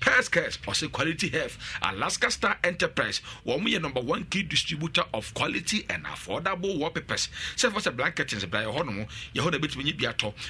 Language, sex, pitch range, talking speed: English, male, 115-165 Hz, 155 wpm